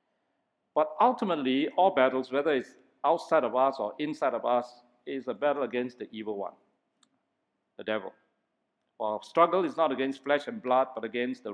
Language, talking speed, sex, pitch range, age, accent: English, 170 wpm, male, 110-145 Hz, 50-69, Malaysian